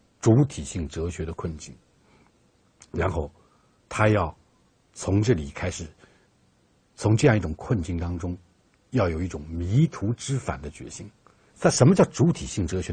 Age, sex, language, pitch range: 60-79, male, Chinese, 85-140 Hz